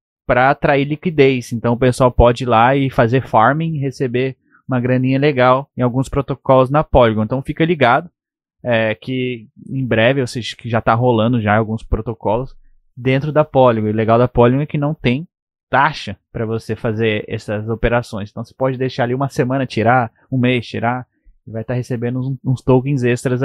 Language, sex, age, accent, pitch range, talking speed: Portuguese, male, 20-39, Brazilian, 115-135 Hz, 190 wpm